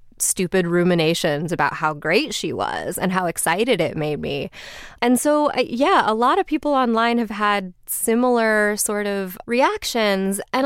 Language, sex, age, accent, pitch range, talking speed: English, female, 20-39, American, 175-250 Hz, 160 wpm